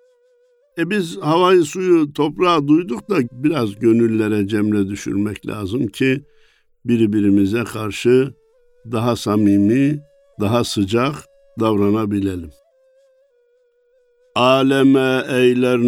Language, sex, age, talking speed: Turkish, male, 60-79, 85 wpm